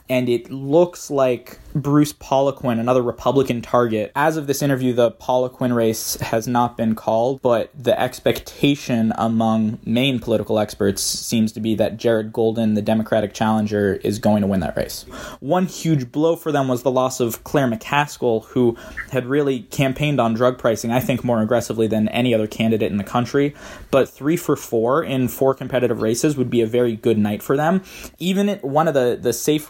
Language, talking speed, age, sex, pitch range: English, 190 wpm, 20-39, male, 115-130 Hz